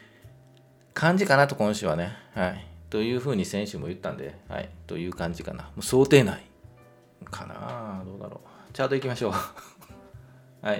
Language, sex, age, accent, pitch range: Japanese, male, 40-59, native, 85-125 Hz